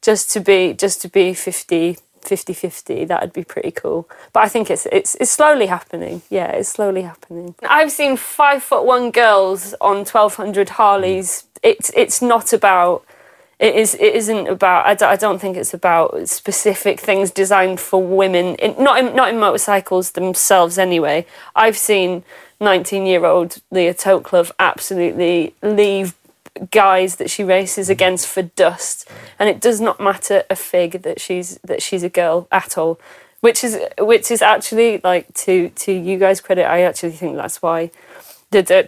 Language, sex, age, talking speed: English, female, 30-49, 175 wpm